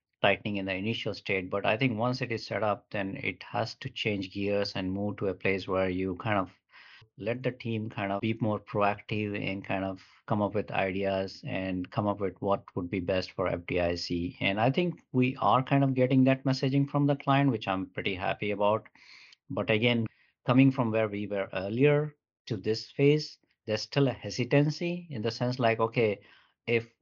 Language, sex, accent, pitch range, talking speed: English, male, Indian, 100-125 Hz, 205 wpm